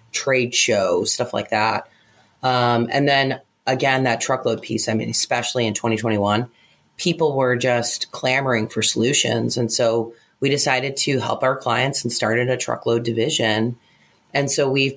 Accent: American